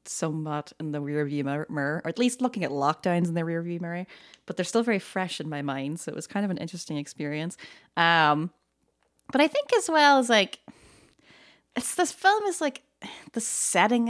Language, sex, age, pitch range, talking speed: English, female, 20-39, 155-215 Hz, 205 wpm